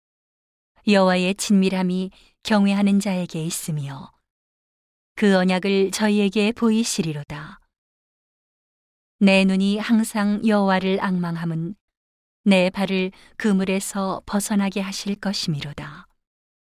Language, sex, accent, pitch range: Korean, female, native, 175-205 Hz